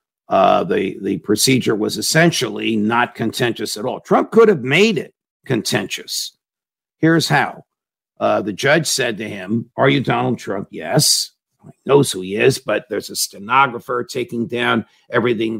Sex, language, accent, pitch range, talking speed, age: male, English, American, 110-140 Hz, 160 wpm, 50-69